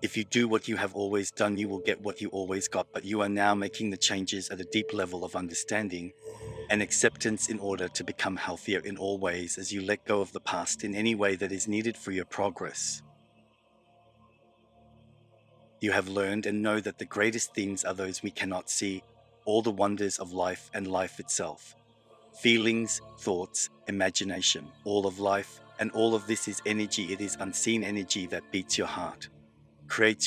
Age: 30-49